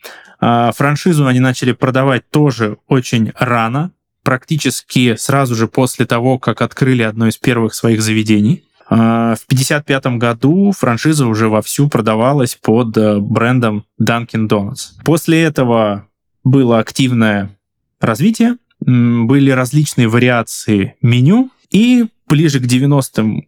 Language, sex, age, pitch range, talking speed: Russian, male, 20-39, 115-150 Hz, 110 wpm